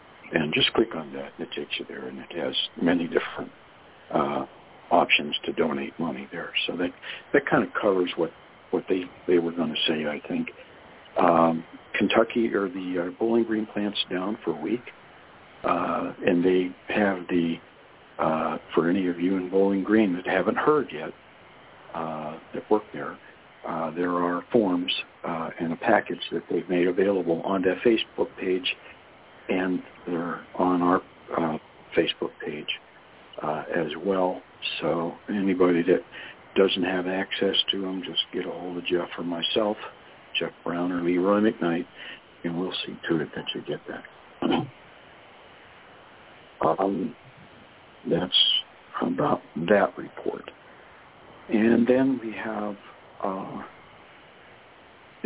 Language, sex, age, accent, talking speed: English, male, 60-79, American, 150 wpm